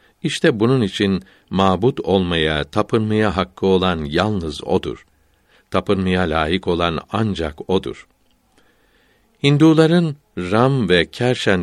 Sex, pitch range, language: male, 90-115 Hz, Turkish